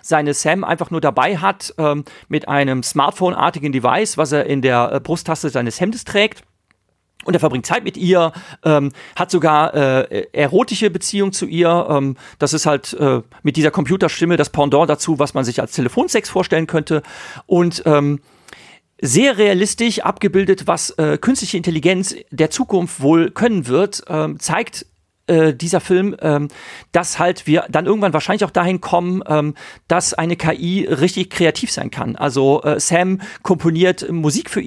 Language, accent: German, German